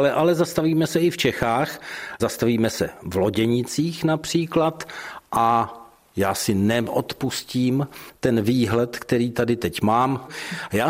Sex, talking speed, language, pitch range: male, 125 wpm, Czech, 115-145 Hz